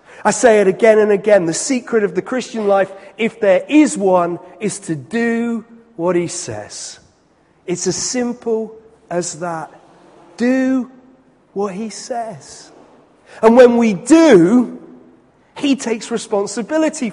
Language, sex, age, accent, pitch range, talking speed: English, male, 40-59, British, 170-230 Hz, 135 wpm